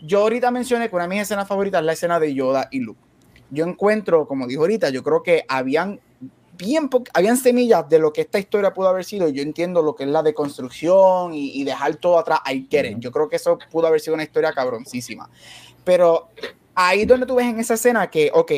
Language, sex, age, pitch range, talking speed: Spanish, male, 20-39, 145-200 Hz, 230 wpm